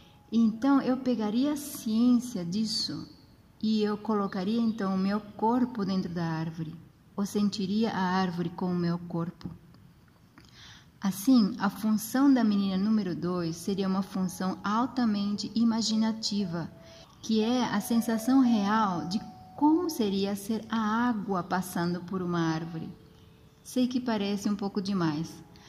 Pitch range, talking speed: 180-225 Hz, 135 wpm